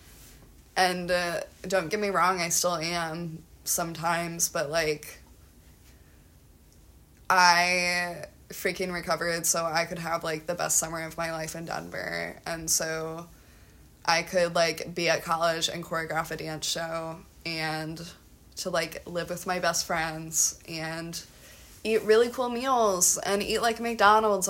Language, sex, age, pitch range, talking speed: English, female, 20-39, 160-185 Hz, 140 wpm